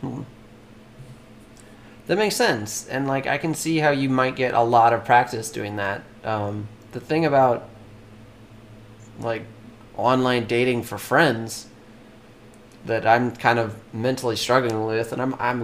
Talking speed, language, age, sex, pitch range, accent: 140 wpm, English, 30-49, male, 110-130 Hz, American